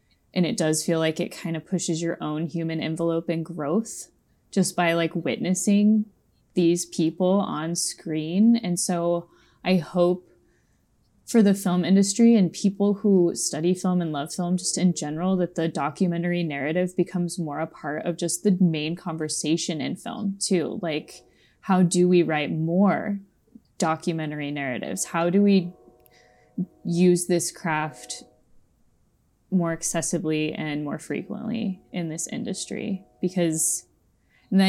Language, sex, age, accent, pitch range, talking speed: English, female, 20-39, American, 160-185 Hz, 145 wpm